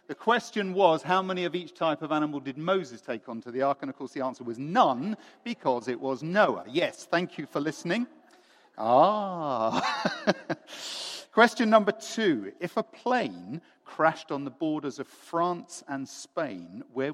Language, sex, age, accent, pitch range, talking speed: English, male, 50-69, British, 145-205 Hz, 170 wpm